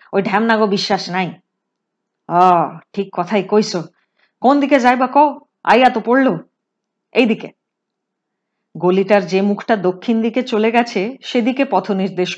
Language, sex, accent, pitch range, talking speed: Hindi, female, native, 195-260 Hz, 100 wpm